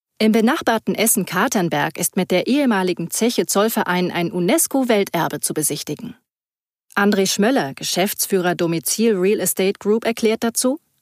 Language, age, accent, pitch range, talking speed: German, 30-49, German, 175-225 Hz, 115 wpm